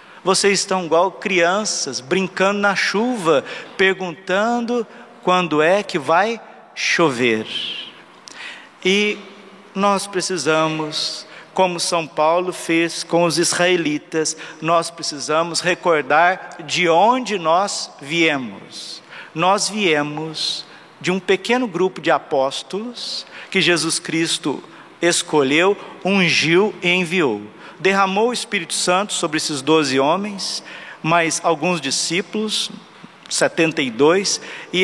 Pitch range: 155-190 Hz